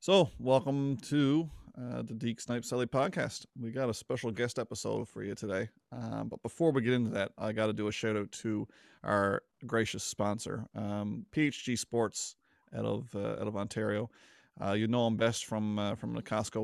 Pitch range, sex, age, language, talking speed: 110-125 Hz, male, 30-49, English, 200 wpm